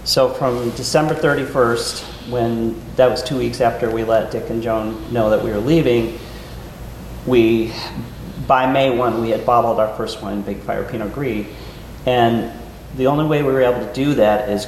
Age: 40-59